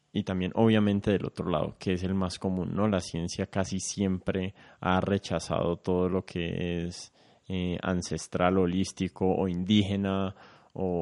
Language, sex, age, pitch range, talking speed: Spanish, male, 20-39, 90-105 Hz, 150 wpm